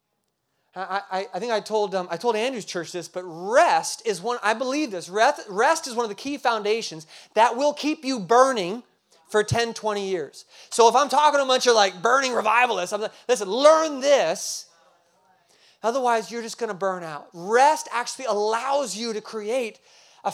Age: 30-49